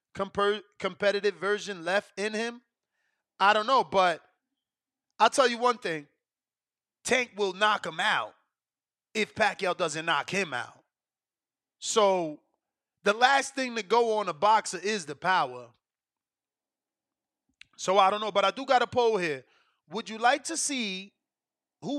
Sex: male